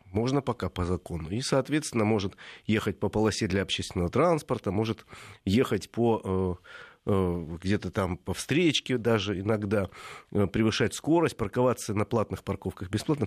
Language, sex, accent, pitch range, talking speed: Russian, male, native, 100-125 Hz, 125 wpm